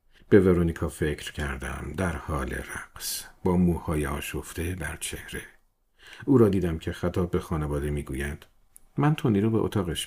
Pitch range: 75-105 Hz